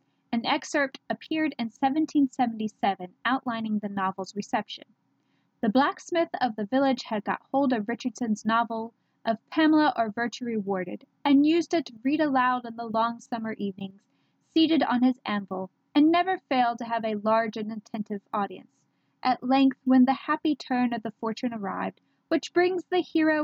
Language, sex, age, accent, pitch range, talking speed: English, female, 10-29, American, 215-285 Hz, 165 wpm